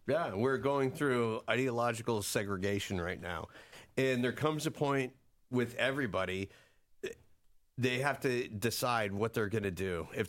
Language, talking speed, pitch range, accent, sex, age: English, 145 wpm, 100-125 Hz, American, male, 40-59